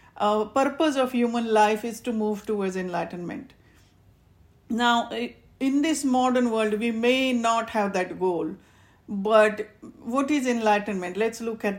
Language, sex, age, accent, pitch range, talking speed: English, female, 50-69, Indian, 195-235 Hz, 145 wpm